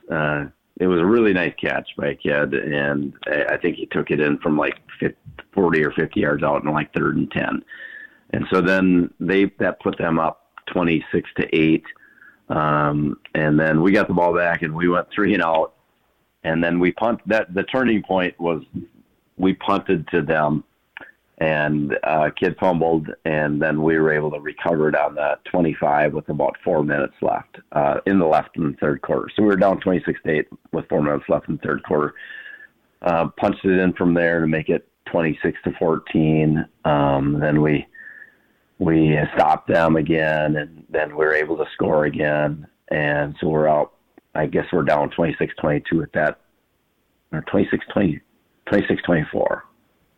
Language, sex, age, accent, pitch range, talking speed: English, male, 50-69, American, 75-85 Hz, 180 wpm